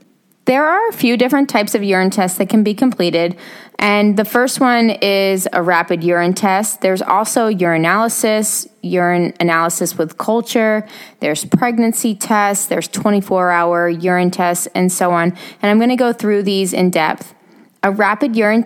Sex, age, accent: female, 20-39, American